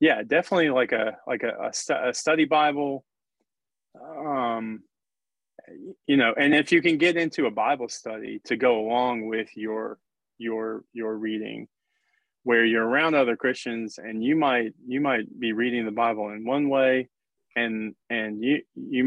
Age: 20-39